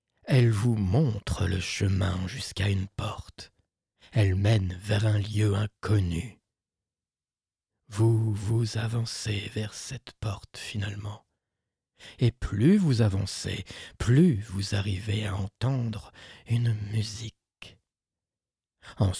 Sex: male